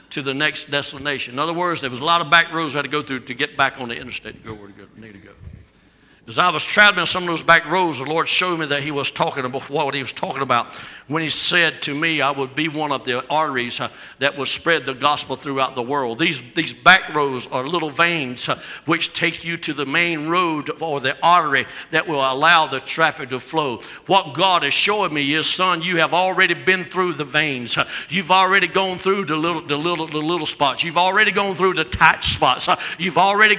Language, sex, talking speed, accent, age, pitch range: English, male, 235 wpm, American, 60-79, 145-200 Hz